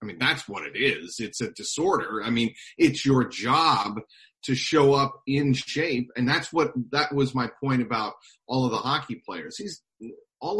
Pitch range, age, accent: 110-135 Hz, 40-59, American